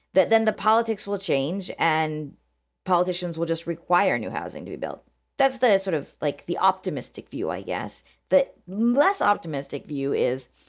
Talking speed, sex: 175 wpm, female